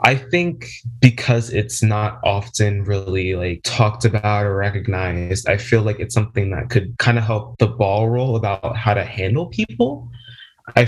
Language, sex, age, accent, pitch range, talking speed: English, male, 20-39, American, 105-120 Hz, 170 wpm